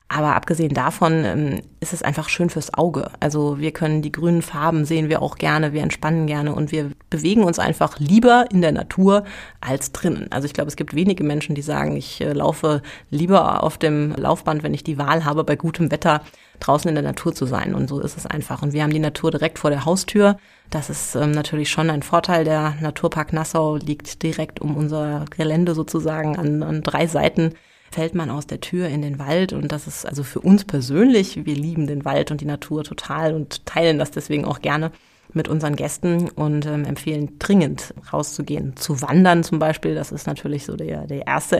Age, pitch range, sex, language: 30-49, 150-165 Hz, female, German